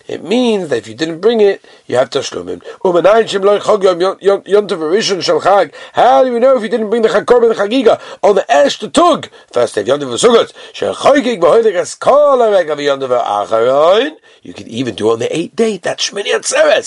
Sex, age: male, 50-69